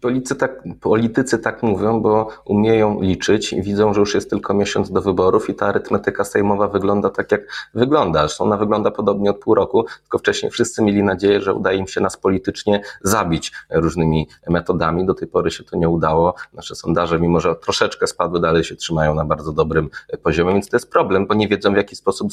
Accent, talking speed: native, 200 wpm